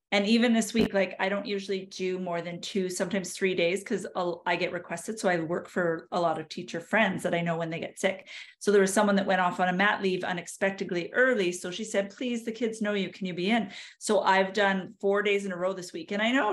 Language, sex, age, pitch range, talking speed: English, female, 40-59, 185-220 Hz, 265 wpm